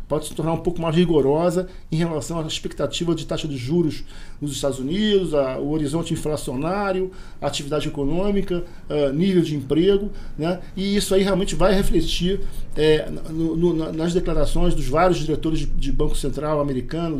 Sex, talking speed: male, 170 wpm